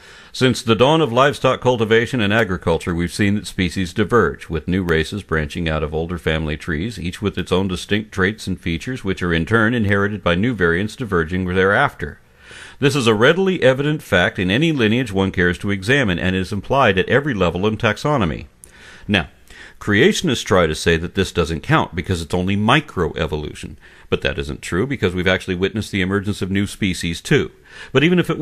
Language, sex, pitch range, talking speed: English, male, 90-120 Hz, 195 wpm